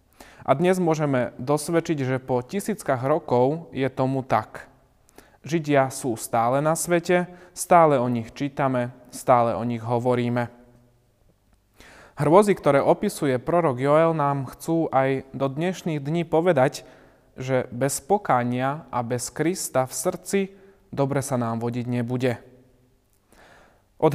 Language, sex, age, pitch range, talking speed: Slovak, male, 30-49, 125-155 Hz, 125 wpm